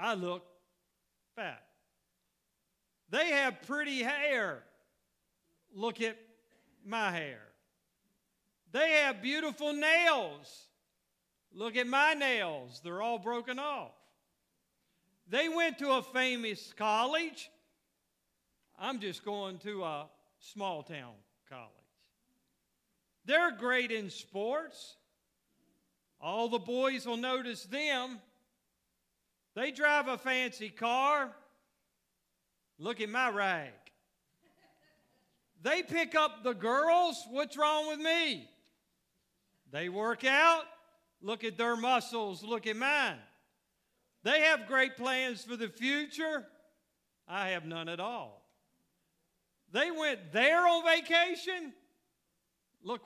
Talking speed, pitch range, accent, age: 105 wpm, 210-295 Hz, American, 50-69